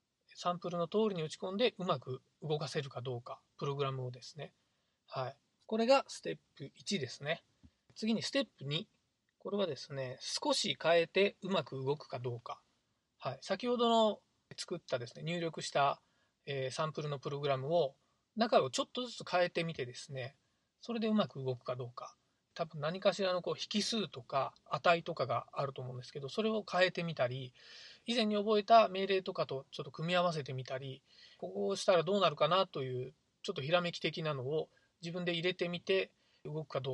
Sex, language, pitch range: male, Japanese, 135-195 Hz